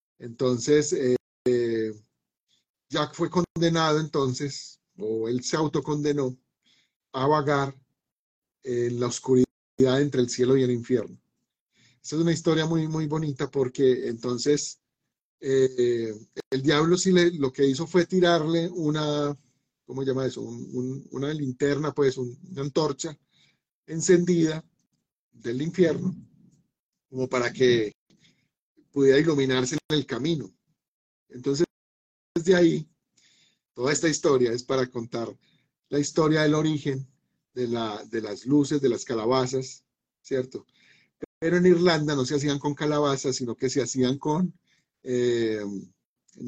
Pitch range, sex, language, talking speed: 125-155 Hz, male, Spanish, 130 wpm